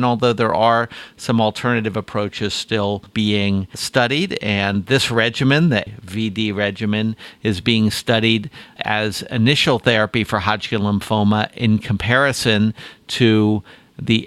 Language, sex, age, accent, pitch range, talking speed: English, male, 50-69, American, 105-120 Hz, 120 wpm